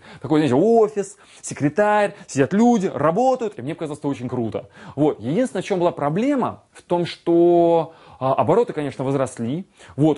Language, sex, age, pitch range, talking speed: Russian, male, 20-39, 140-195 Hz, 160 wpm